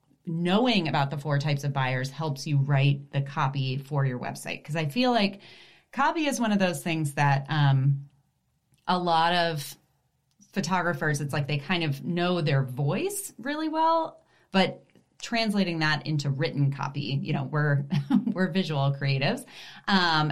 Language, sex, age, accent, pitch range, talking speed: English, female, 30-49, American, 145-190 Hz, 160 wpm